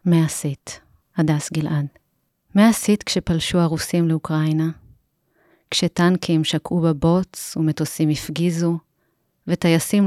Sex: female